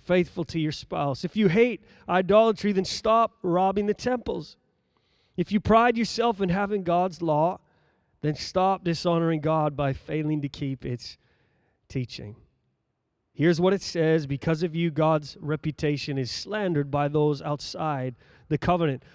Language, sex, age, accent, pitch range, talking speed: English, male, 30-49, American, 165-230 Hz, 145 wpm